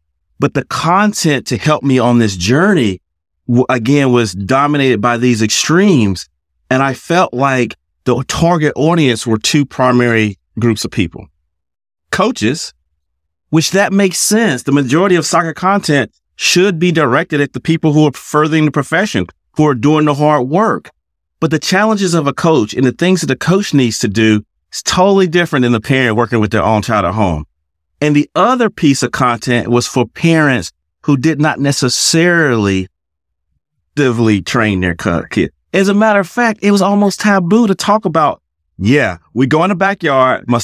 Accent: American